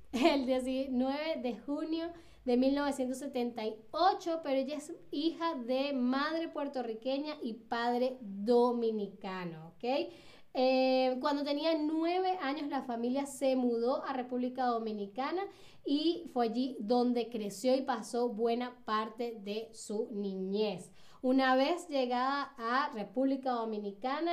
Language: Spanish